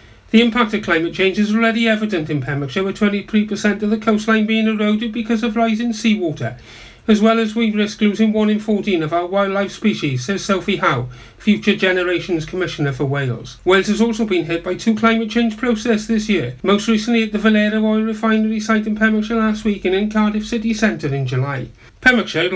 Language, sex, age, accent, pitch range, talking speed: English, male, 40-59, British, 160-220 Hz, 195 wpm